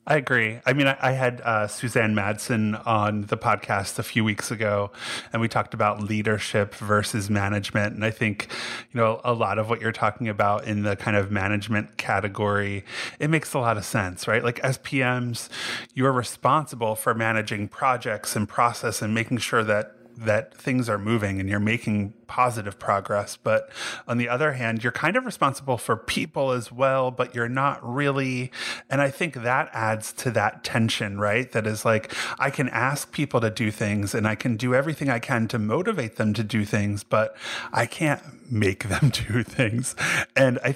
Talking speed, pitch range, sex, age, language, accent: 190 wpm, 105-125 Hz, male, 30-49, English, American